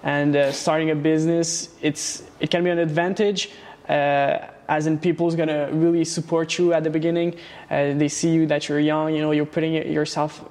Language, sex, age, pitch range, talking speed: English, male, 20-39, 150-170 Hz, 200 wpm